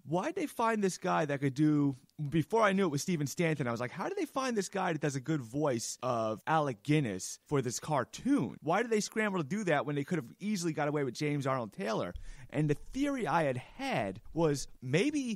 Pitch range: 135-185 Hz